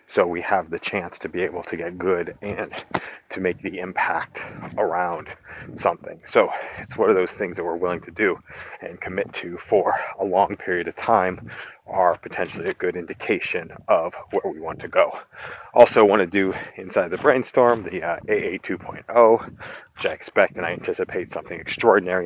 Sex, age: male, 30-49